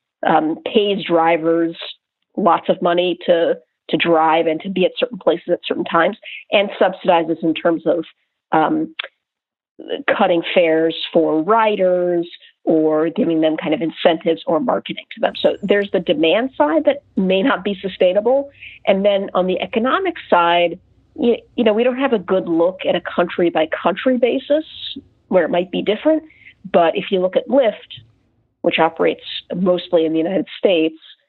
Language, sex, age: English, female, 40-59